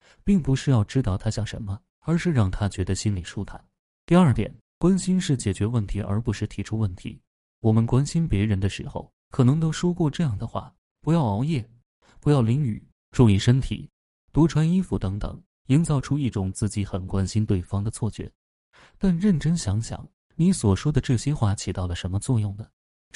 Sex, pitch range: male, 100-135 Hz